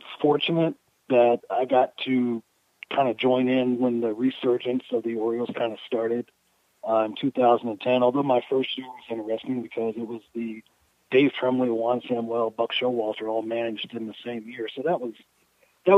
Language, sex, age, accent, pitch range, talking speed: English, male, 40-59, American, 115-130 Hz, 180 wpm